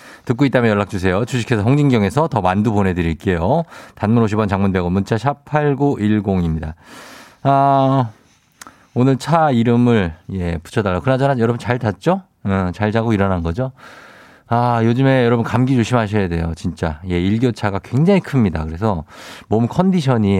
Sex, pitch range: male, 95-140 Hz